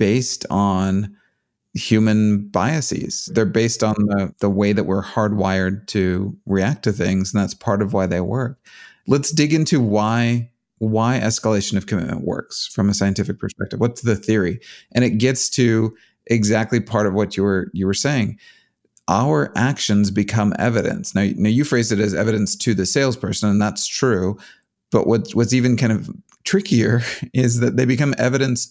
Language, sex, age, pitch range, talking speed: English, male, 30-49, 100-120 Hz, 170 wpm